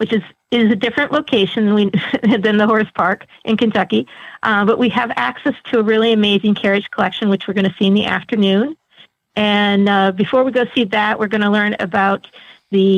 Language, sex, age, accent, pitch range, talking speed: English, female, 40-59, American, 190-230 Hz, 215 wpm